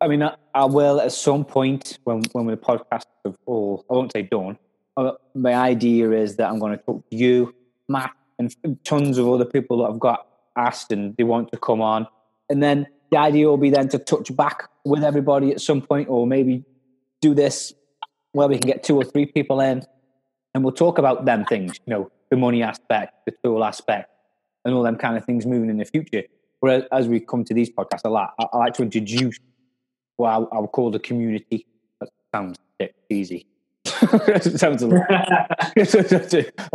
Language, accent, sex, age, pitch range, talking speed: English, British, male, 20-39, 120-145 Hz, 200 wpm